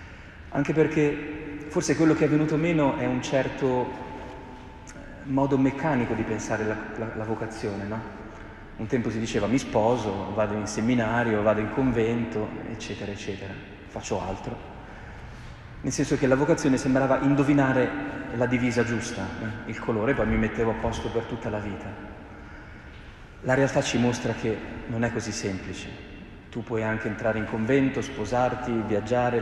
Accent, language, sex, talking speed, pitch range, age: native, Italian, male, 155 wpm, 105-130 Hz, 30-49